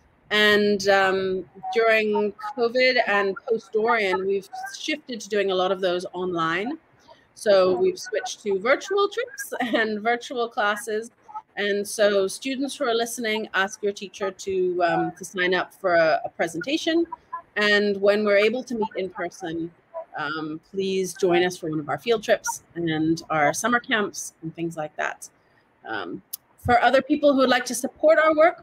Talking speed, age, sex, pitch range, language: 165 wpm, 30-49, female, 190-250 Hz, English